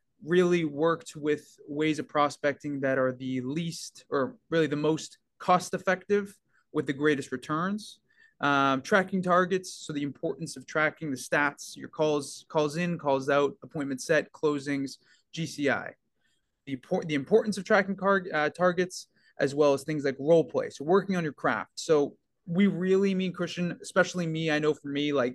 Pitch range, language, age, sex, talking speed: 135-165 Hz, English, 20-39, male, 170 wpm